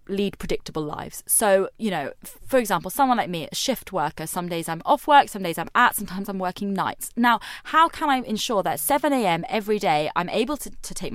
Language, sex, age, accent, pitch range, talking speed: English, female, 20-39, British, 170-240 Hz, 220 wpm